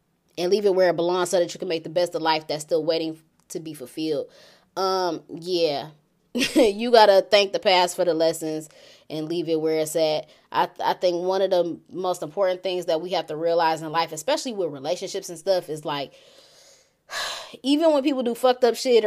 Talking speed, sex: 215 wpm, female